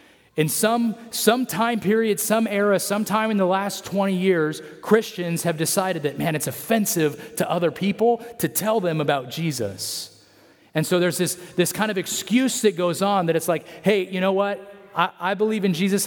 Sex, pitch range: male, 150-200 Hz